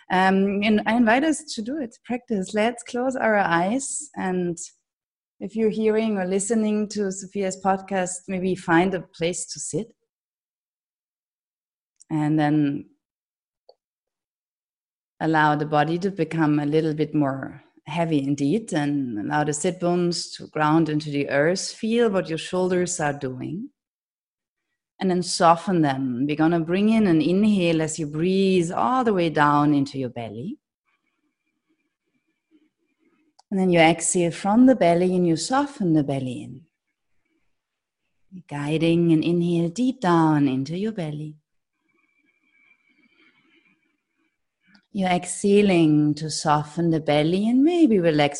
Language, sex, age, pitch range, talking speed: German, female, 30-49, 155-220 Hz, 135 wpm